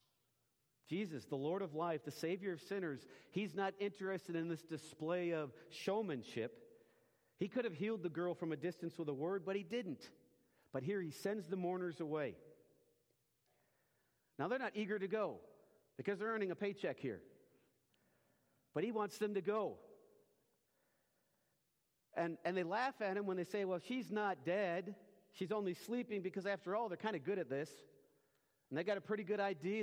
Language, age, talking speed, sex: English, 50-69, 180 wpm, male